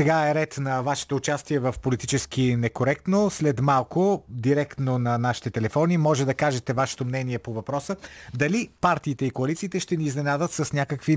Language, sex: Bulgarian, male